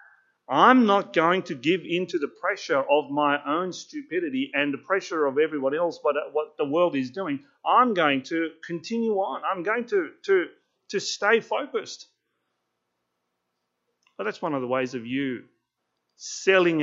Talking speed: 165 wpm